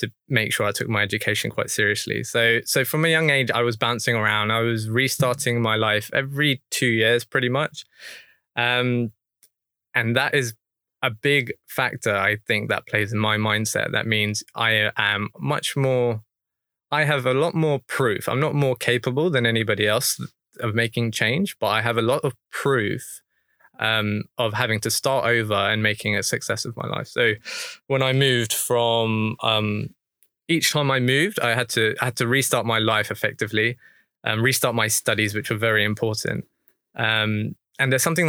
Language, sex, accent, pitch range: English, male, British, 110-130 Hz